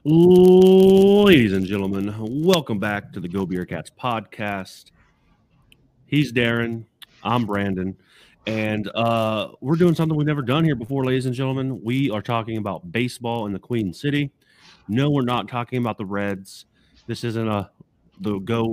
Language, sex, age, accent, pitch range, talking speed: English, male, 30-49, American, 100-125 Hz, 155 wpm